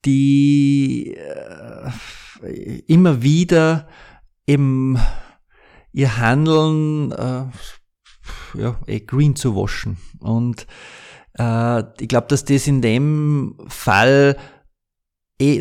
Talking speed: 85 wpm